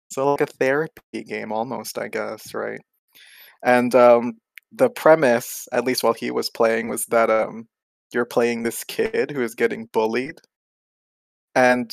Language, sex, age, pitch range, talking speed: English, male, 20-39, 115-140 Hz, 155 wpm